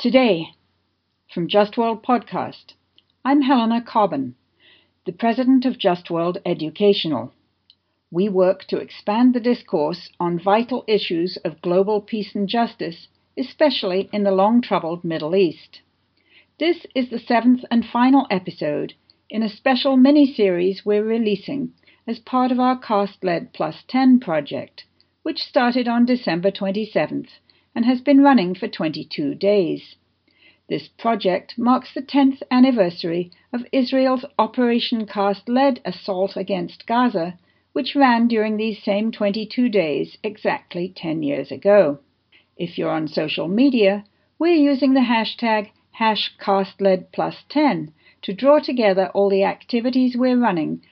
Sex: female